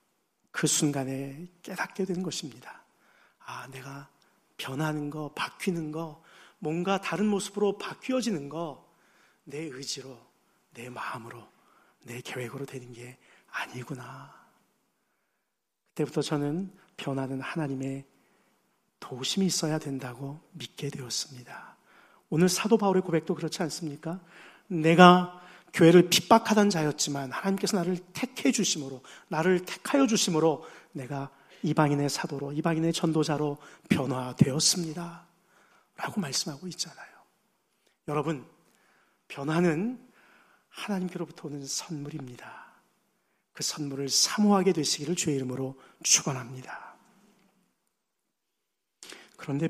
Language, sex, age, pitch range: Korean, male, 40-59, 140-185 Hz